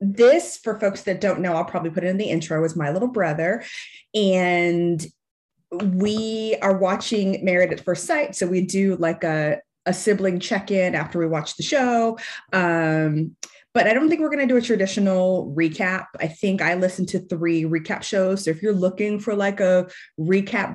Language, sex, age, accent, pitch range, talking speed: English, female, 30-49, American, 165-200 Hz, 190 wpm